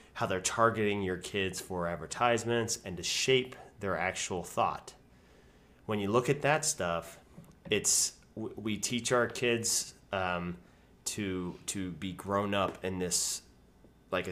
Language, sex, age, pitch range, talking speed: English, male, 30-49, 85-110 Hz, 140 wpm